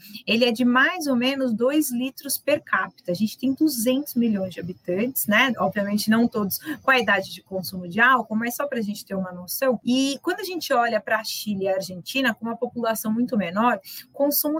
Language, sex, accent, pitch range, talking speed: Portuguese, female, Brazilian, 220-285 Hz, 220 wpm